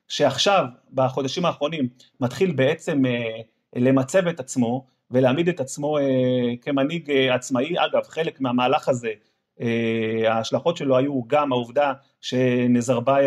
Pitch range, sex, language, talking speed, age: 130-160 Hz, male, Hebrew, 120 wpm, 30-49